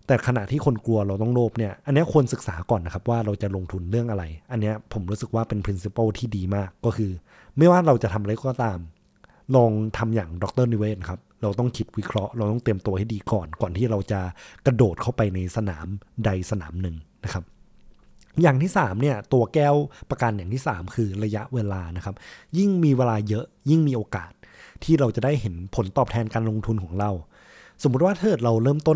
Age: 20-39